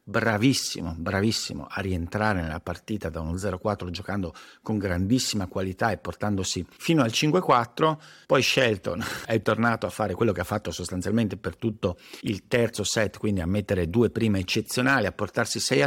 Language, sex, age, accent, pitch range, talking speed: Italian, male, 50-69, native, 100-115 Hz, 155 wpm